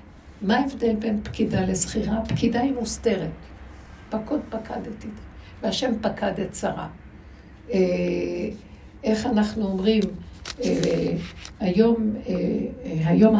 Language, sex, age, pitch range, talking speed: Hebrew, female, 60-79, 170-225 Hz, 90 wpm